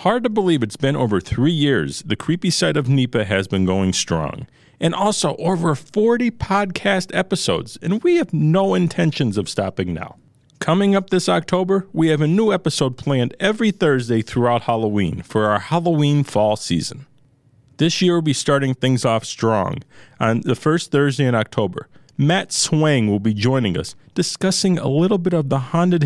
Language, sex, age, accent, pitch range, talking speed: English, male, 40-59, American, 115-165 Hz, 175 wpm